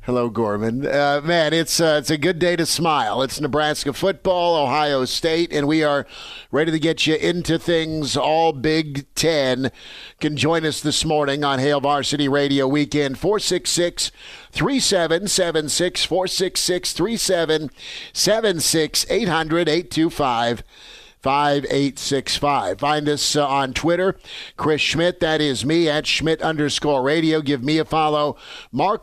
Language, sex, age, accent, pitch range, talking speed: English, male, 50-69, American, 140-160 Hz, 130 wpm